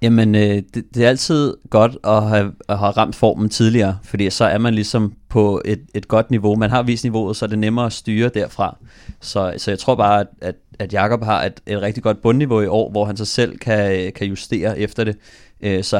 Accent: native